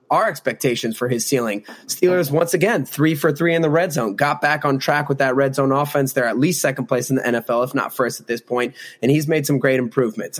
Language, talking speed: English, 255 wpm